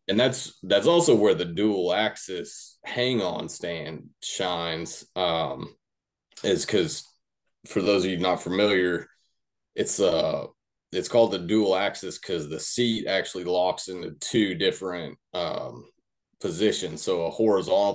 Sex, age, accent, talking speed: male, 30-49, American, 135 wpm